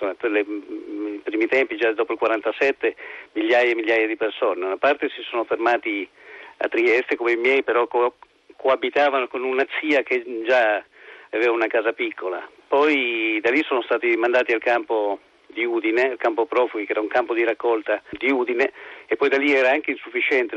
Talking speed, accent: 185 wpm, native